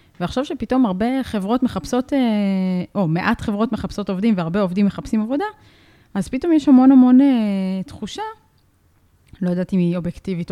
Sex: female